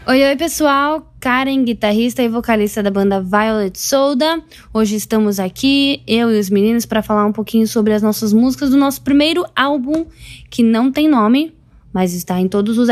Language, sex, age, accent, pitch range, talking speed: Portuguese, female, 10-29, Brazilian, 195-255 Hz, 180 wpm